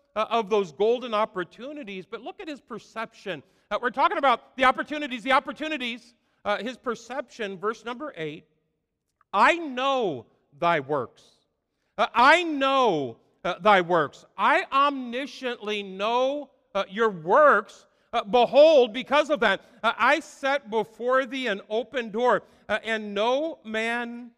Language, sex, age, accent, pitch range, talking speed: English, male, 50-69, American, 195-275 Hz, 140 wpm